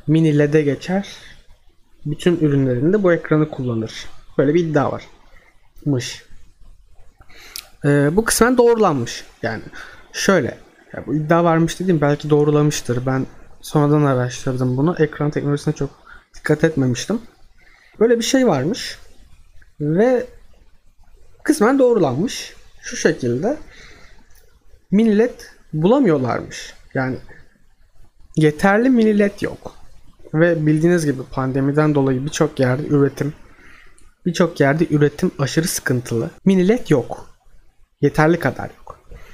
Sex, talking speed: male, 100 wpm